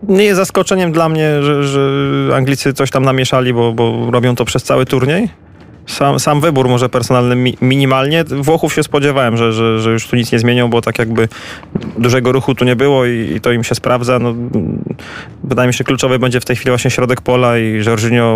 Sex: male